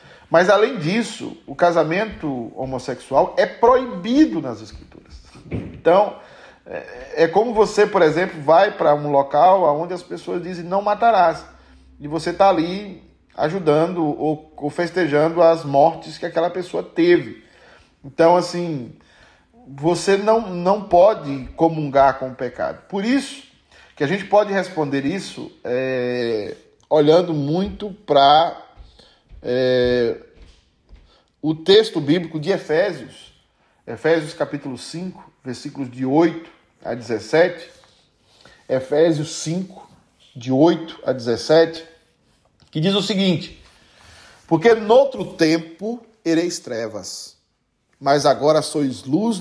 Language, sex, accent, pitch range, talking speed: Portuguese, male, Brazilian, 145-185 Hz, 115 wpm